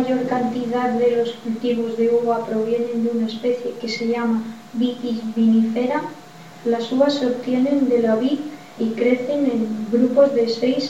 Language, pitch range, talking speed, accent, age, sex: Spanish, 225-250 Hz, 165 wpm, Spanish, 20-39, female